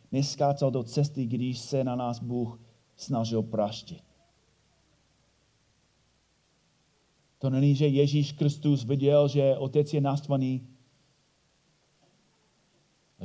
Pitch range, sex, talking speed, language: 95-130 Hz, male, 95 wpm, Czech